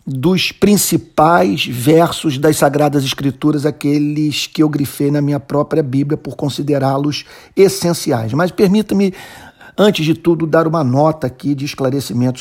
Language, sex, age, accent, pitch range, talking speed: Portuguese, male, 50-69, Brazilian, 130-155 Hz, 135 wpm